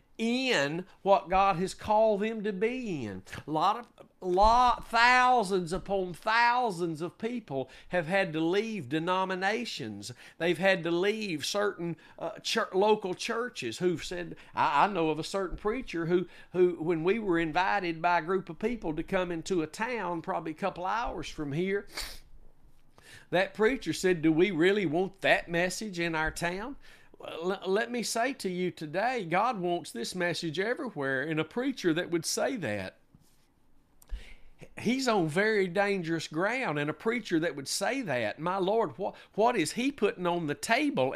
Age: 50-69